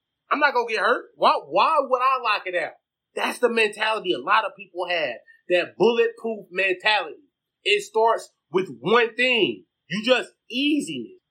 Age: 30-49